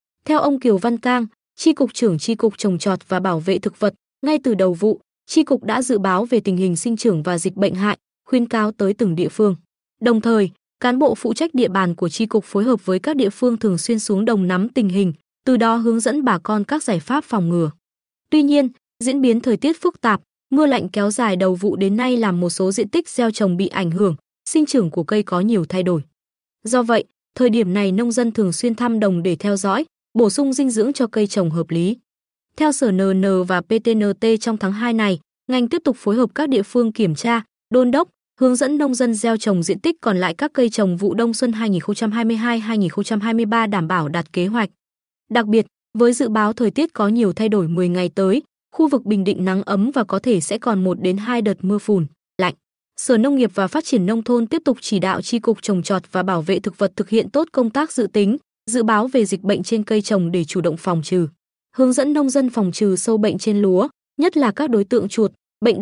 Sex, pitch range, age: female, 195-245 Hz, 20-39